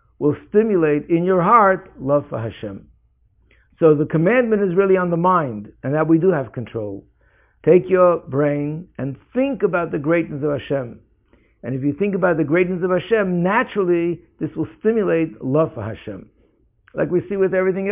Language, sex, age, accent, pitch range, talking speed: English, male, 60-79, American, 145-180 Hz, 180 wpm